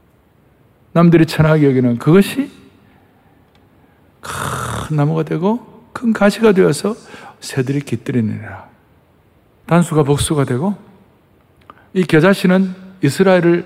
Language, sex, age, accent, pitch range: Korean, male, 60-79, native, 145-200 Hz